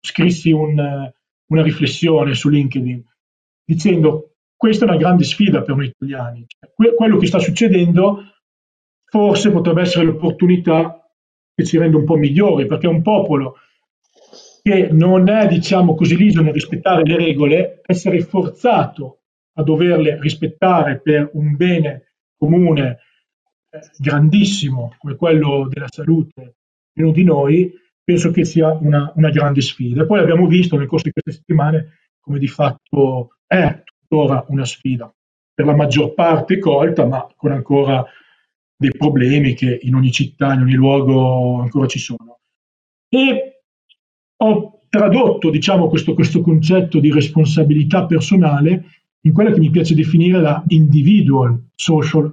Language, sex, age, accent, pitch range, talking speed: Italian, male, 40-59, native, 140-175 Hz, 140 wpm